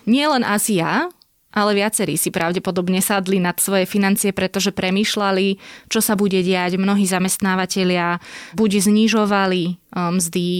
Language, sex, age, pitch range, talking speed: Slovak, female, 20-39, 180-210 Hz, 125 wpm